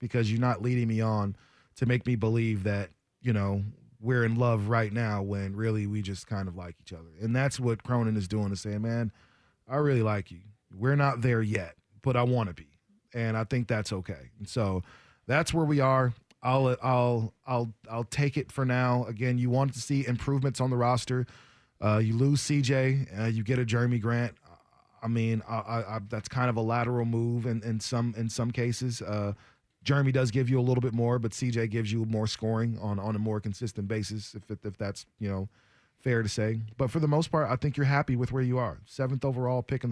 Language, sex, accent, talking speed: English, male, American, 225 wpm